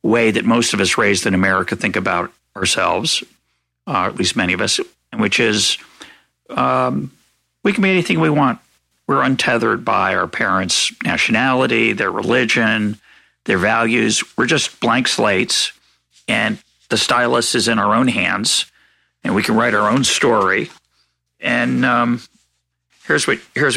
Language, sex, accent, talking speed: English, male, American, 150 wpm